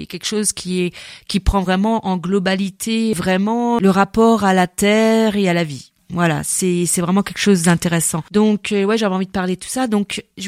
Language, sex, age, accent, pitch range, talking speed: French, female, 30-49, French, 180-215 Hz, 210 wpm